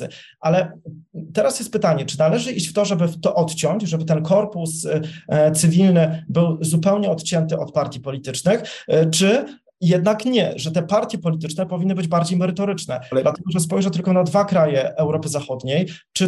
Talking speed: 160 wpm